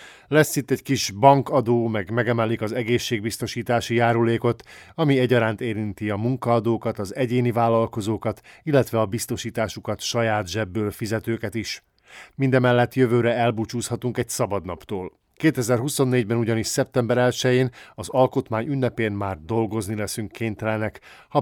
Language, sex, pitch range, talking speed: Hungarian, male, 110-125 Hz, 120 wpm